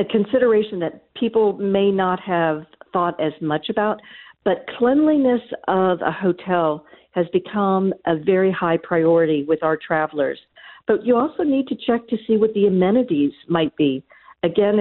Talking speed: 160 wpm